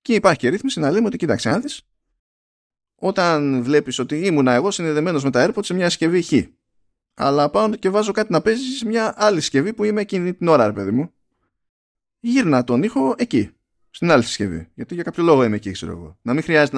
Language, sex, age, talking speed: Greek, male, 20-39, 210 wpm